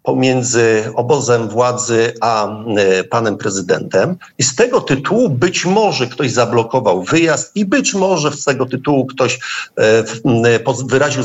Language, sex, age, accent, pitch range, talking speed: Polish, male, 50-69, native, 120-160 Hz, 125 wpm